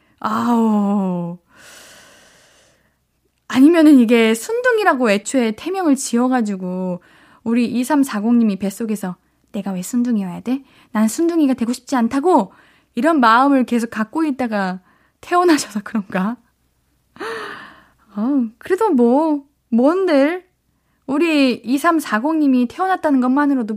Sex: female